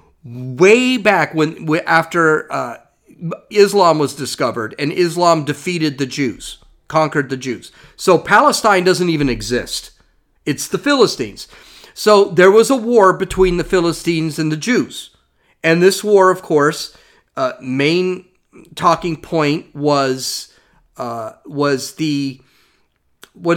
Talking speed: 125 wpm